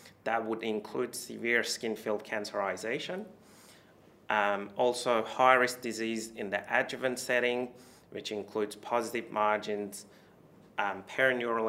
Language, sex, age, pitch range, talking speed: English, male, 30-49, 100-115 Hz, 110 wpm